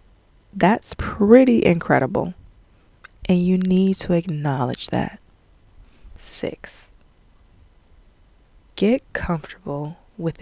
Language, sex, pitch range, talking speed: English, female, 140-185 Hz, 75 wpm